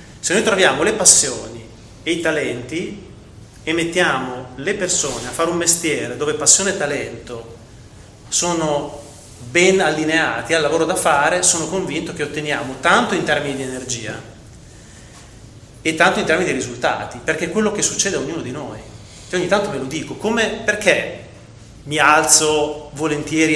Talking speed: 160 wpm